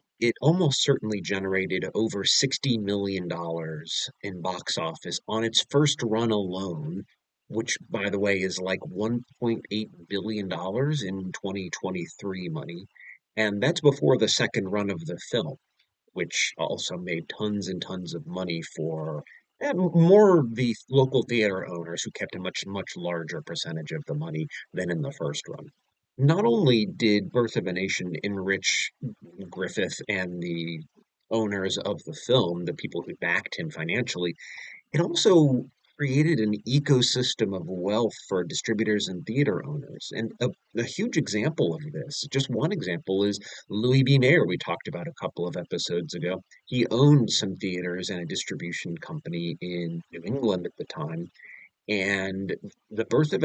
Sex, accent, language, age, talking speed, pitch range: male, American, English, 40-59, 155 wpm, 95-135 Hz